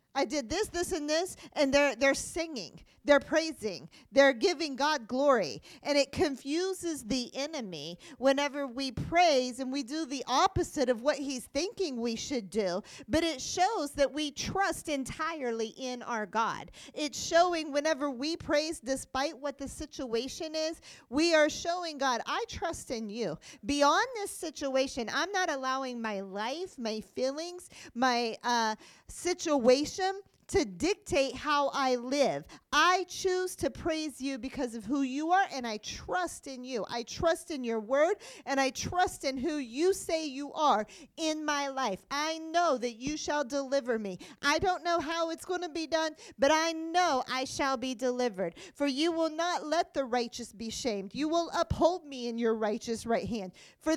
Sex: female